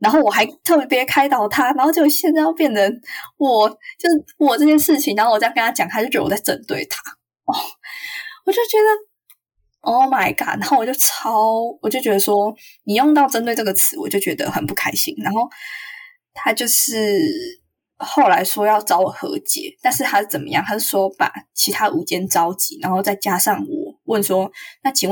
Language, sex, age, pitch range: Chinese, female, 10-29, 195-305 Hz